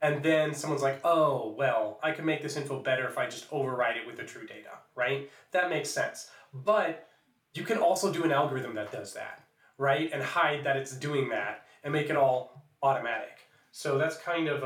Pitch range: 130-160 Hz